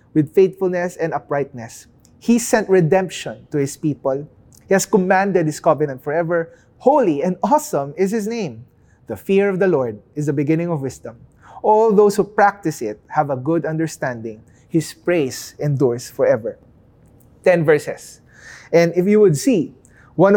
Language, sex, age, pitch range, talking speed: English, male, 20-39, 160-200 Hz, 155 wpm